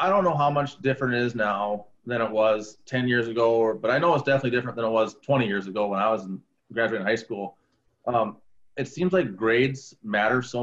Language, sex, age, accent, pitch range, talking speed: English, male, 30-49, American, 110-130 Hz, 235 wpm